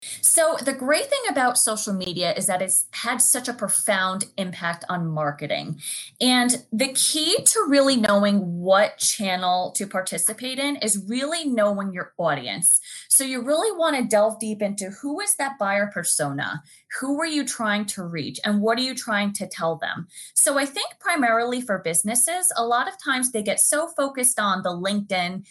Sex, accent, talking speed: female, American, 180 wpm